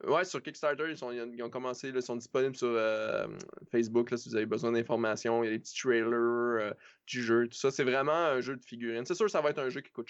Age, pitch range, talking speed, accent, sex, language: 20-39, 120-135 Hz, 280 wpm, Canadian, male, French